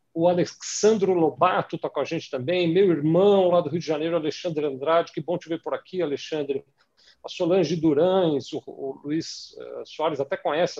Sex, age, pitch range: male, 50-69, 150-180 Hz